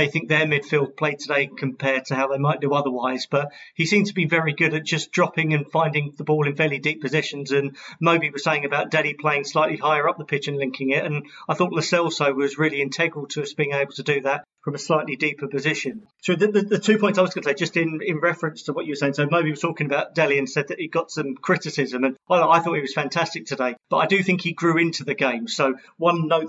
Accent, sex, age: British, male, 30-49